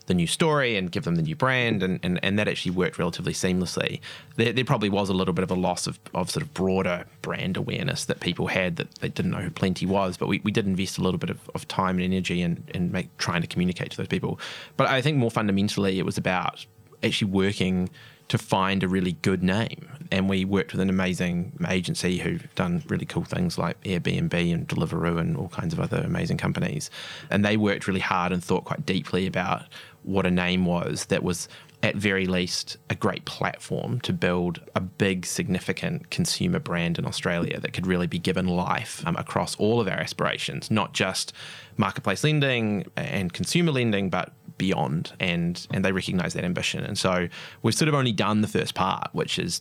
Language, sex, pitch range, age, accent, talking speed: English, male, 90-130 Hz, 20-39, Australian, 210 wpm